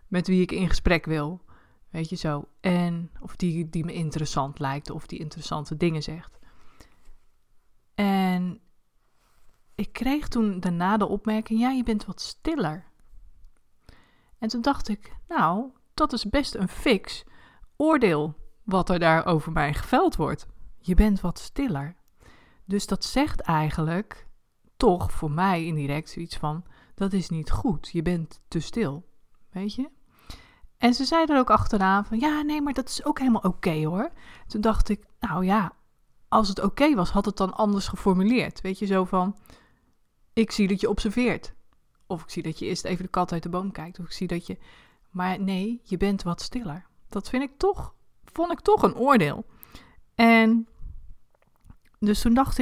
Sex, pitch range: female, 170-225 Hz